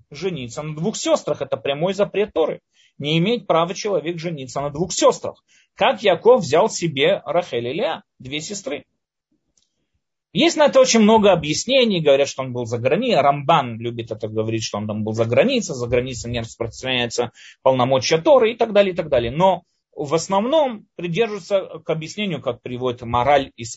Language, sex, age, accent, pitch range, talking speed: Russian, male, 30-49, native, 140-220 Hz, 170 wpm